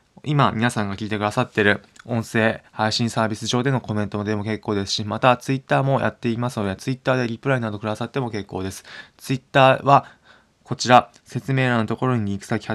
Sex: male